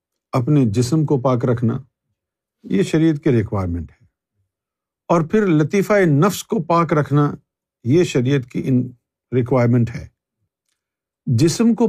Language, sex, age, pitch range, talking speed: Urdu, male, 50-69, 125-175 Hz, 120 wpm